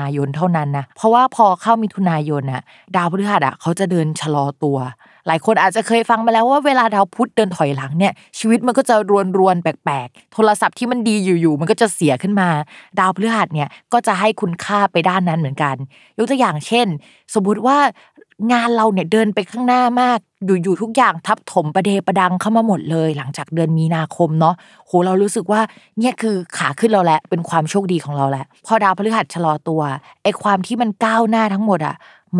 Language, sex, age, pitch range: Thai, female, 20-39, 155-215 Hz